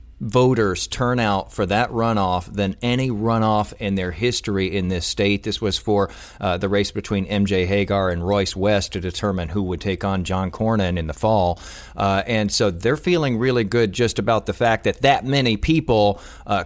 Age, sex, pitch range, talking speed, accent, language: 40-59, male, 100-115 Hz, 190 wpm, American, English